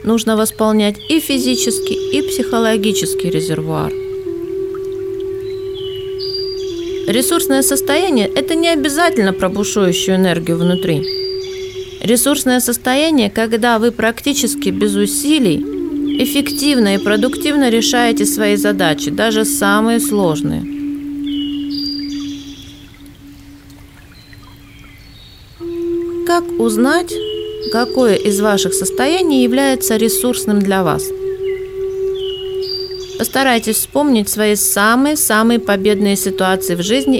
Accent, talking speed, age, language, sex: native, 80 wpm, 30-49, Russian, female